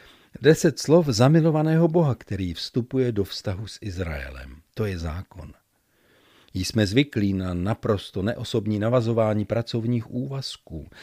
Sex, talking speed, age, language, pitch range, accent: male, 115 wpm, 50-69, Czech, 100-135 Hz, native